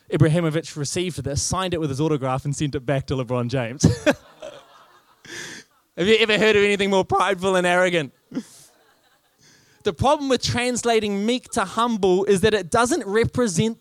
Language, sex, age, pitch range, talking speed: English, male, 20-39, 155-210 Hz, 160 wpm